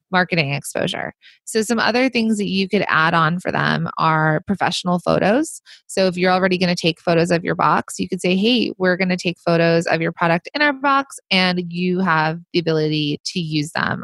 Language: English